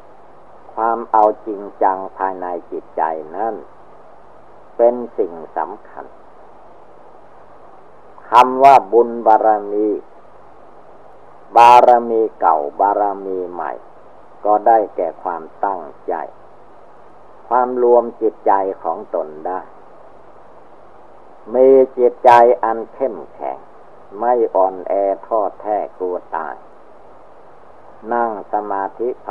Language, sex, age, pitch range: Thai, male, 50-69, 100-125 Hz